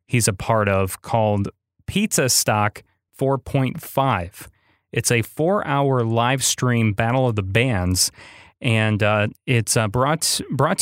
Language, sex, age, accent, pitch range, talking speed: English, male, 30-49, American, 105-135 Hz, 135 wpm